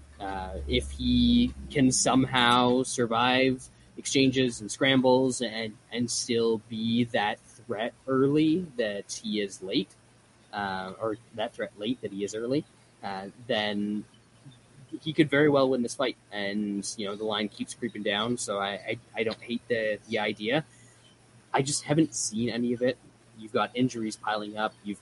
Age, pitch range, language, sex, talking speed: 20-39, 105-125 Hz, English, male, 165 wpm